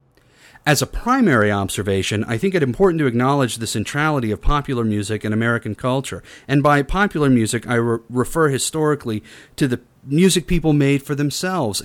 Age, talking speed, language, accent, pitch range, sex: 30-49, 160 wpm, English, American, 110-140 Hz, male